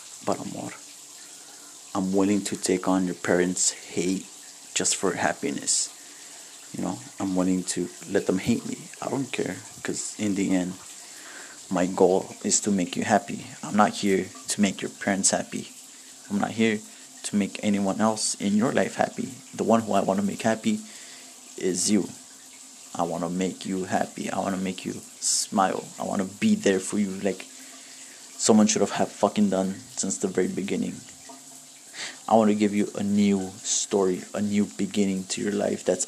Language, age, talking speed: English, 30-49, 185 wpm